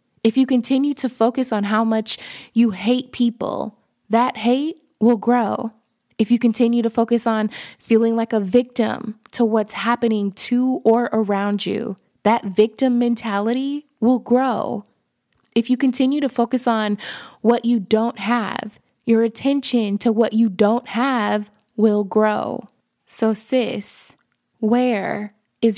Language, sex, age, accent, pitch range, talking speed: English, female, 20-39, American, 215-245 Hz, 140 wpm